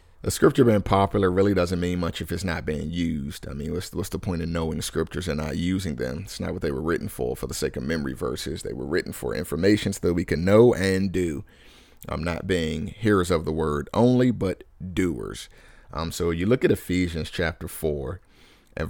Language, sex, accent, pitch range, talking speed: English, male, American, 75-95 Hz, 225 wpm